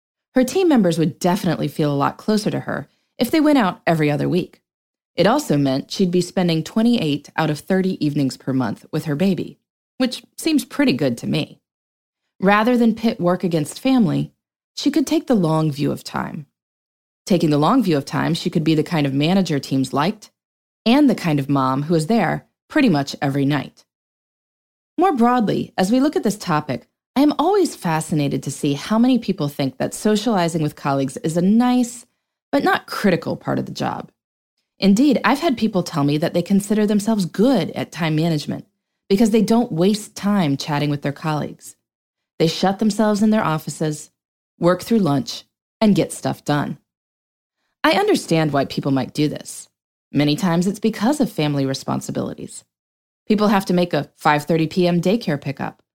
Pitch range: 150-225 Hz